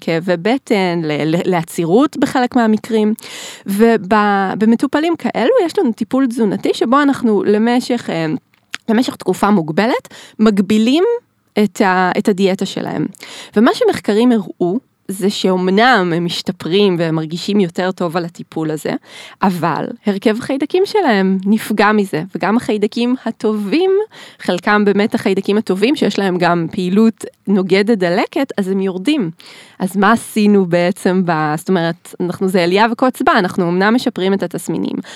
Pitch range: 185-240 Hz